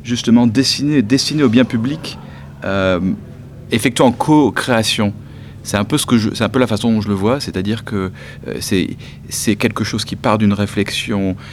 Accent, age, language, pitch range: French, 40-59, French, 95-115 Hz